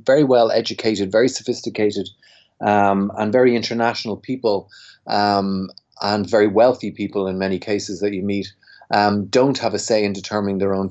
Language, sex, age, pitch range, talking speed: English, male, 30-49, 100-115 Hz, 165 wpm